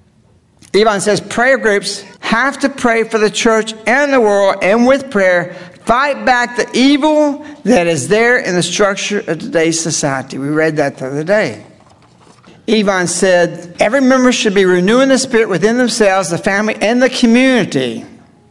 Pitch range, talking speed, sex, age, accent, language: 175-240 Hz, 165 wpm, male, 60-79, American, English